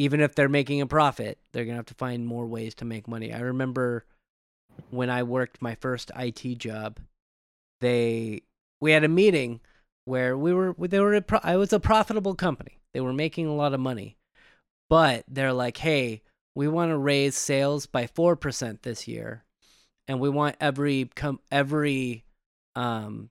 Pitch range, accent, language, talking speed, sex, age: 115-145 Hz, American, English, 175 wpm, male, 30-49